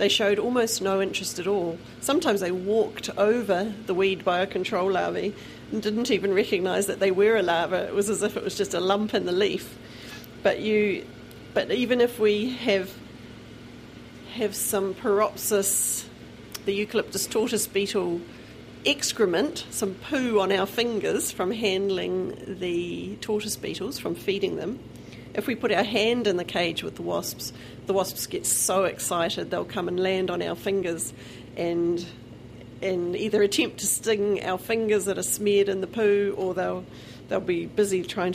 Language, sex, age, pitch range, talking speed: English, female, 40-59, 175-210 Hz, 170 wpm